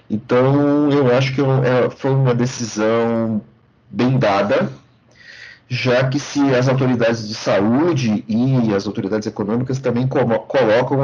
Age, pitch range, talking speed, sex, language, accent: 40-59, 115-140 Hz, 120 wpm, male, Portuguese, Brazilian